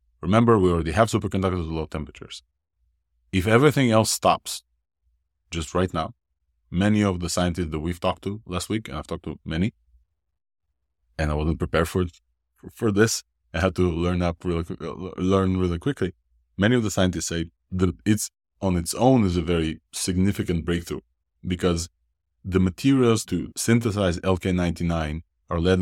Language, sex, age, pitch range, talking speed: English, male, 20-39, 75-95 Hz, 165 wpm